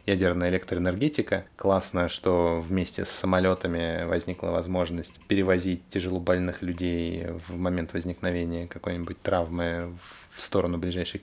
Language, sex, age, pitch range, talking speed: Russian, male, 20-39, 90-105 Hz, 105 wpm